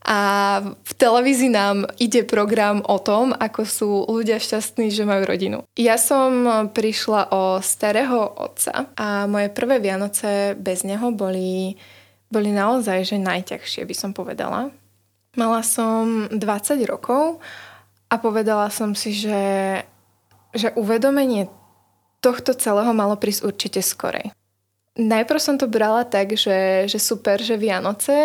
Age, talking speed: 20-39, 130 wpm